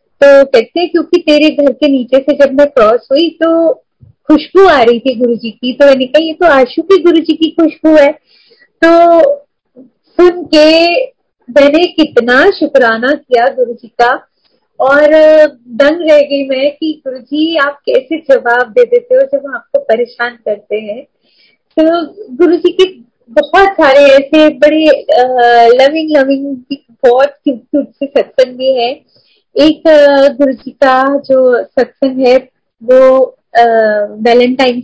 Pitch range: 255-315 Hz